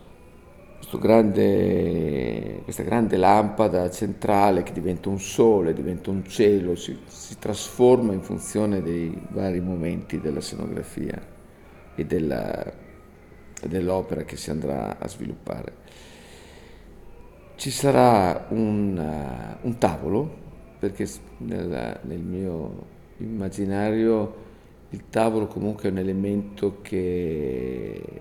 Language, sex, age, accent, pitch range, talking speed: Italian, male, 50-69, native, 85-105 Hz, 100 wpm